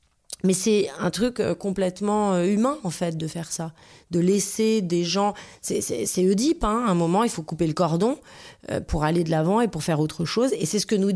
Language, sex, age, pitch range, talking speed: French, female, 30-49, 170-215 Hz, 225 wpm